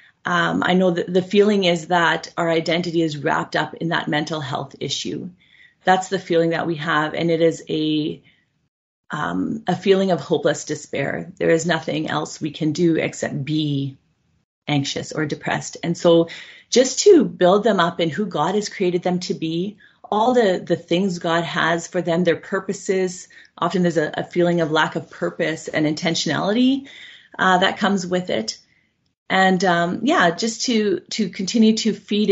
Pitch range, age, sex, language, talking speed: 165-200 Hz, 30-49, female, English, 180 wpm